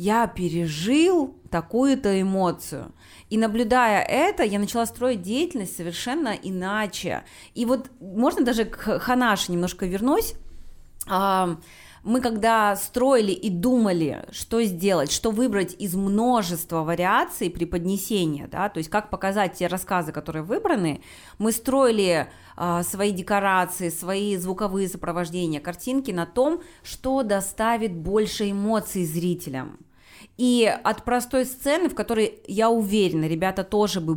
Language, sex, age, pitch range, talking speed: Russian, female, 20-39, 180-235 Hz, 120 wpm